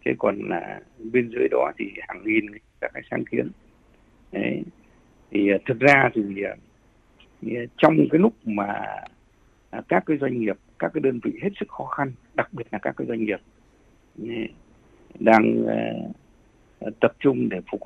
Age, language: 60-79, Vietnamese